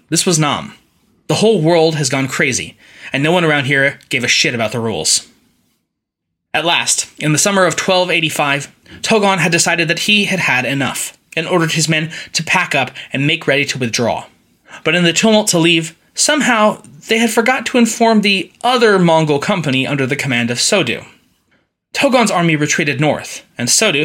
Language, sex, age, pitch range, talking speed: English, male, 20-39, 140-185 Hz, 185 wpm